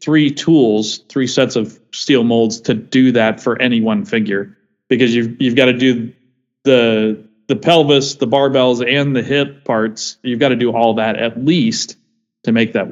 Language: English